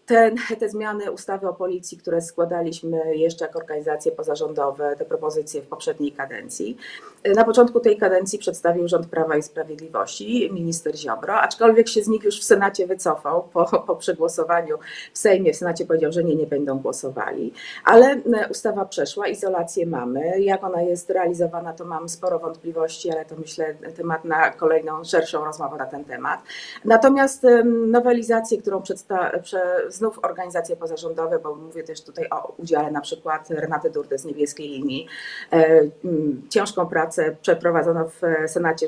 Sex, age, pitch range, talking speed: female, 30-49, 165-235 Hz, 150 wpm